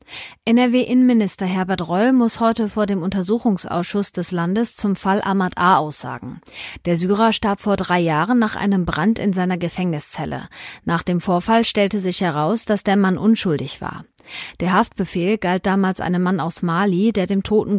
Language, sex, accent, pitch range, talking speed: German, female, German, 175-215 Hz, 165 wpm